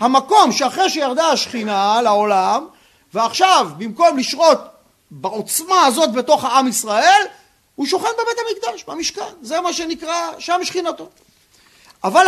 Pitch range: 240-360 Hz